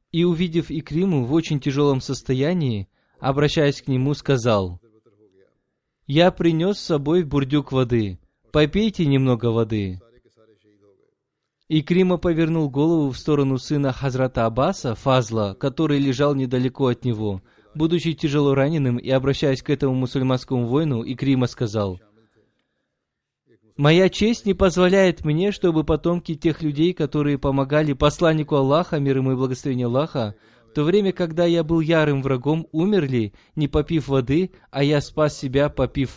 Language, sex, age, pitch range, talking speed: Russian, male, 20-39, 125-155 Hz, 135 wpm